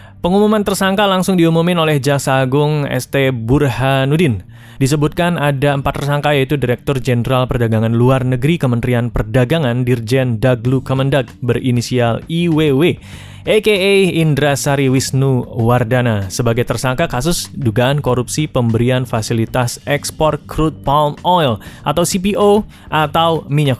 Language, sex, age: Indonesian, male, 20-39